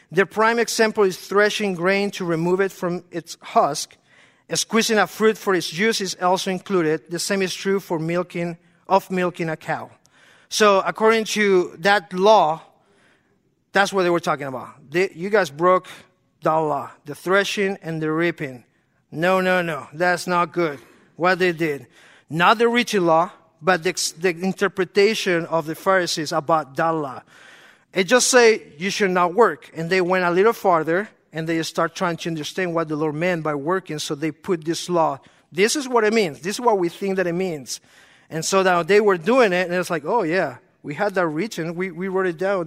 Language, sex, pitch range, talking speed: English, male, 165-200 Hz, 200 wpm